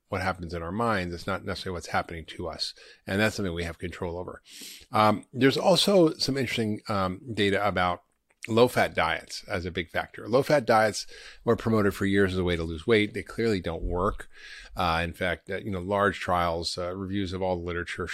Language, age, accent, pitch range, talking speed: English, 30-49, American, 90-115 Hz, 215 wpm